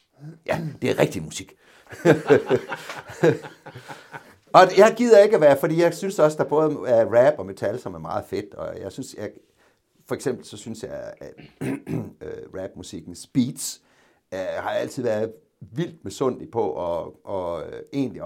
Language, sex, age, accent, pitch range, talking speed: Danish, male, 60-79, native, 120-160 Hz, 160 wpm